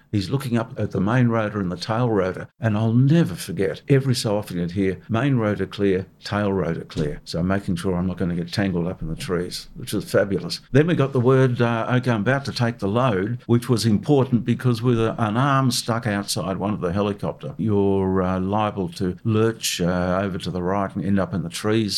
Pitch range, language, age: 95-120 Hz, English, 60-79